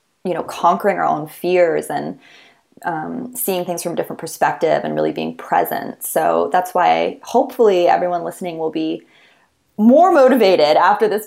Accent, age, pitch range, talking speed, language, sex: American, 20-39, 165-215 Hz, 160 wpm, English, female